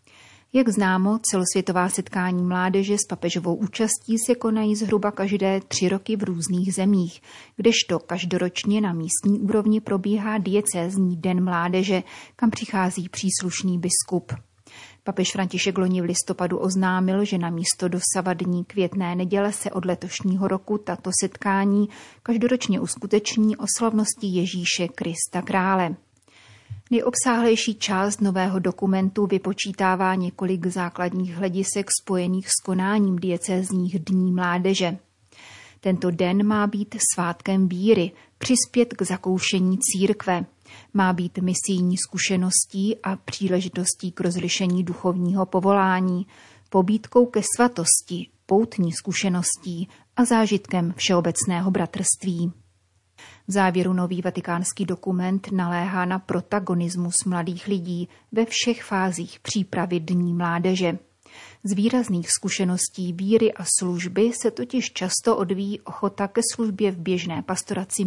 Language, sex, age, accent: Czech, female, 30-49, native